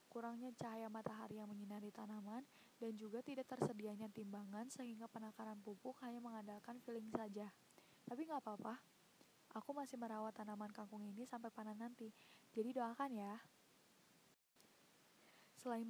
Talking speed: 130 wpm